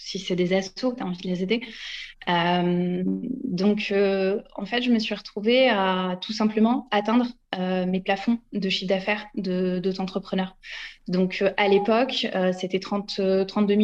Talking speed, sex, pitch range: 175 wpm, female, 190-215 Hz